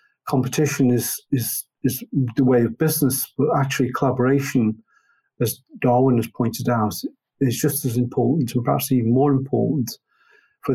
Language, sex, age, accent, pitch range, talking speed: English, male, 50-69, British, 120-135 Hz, 145 wpm